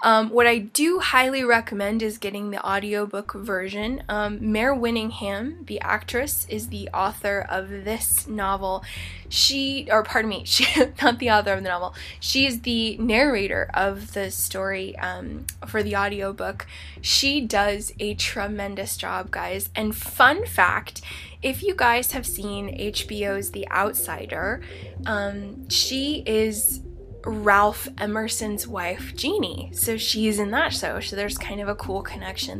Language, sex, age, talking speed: English, female, 20-39, 145 wpm